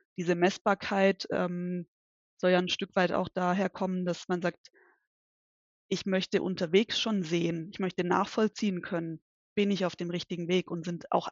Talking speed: 170 wpm